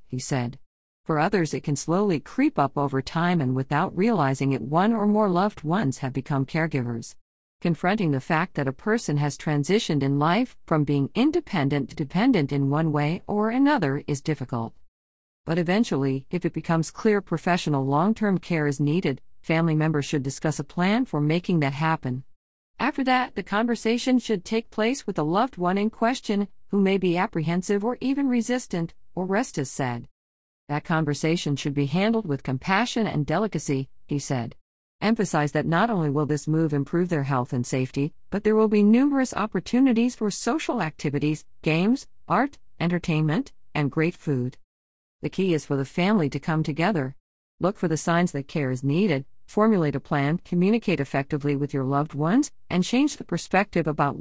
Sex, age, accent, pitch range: female, 50-69, American, 140-205 Hz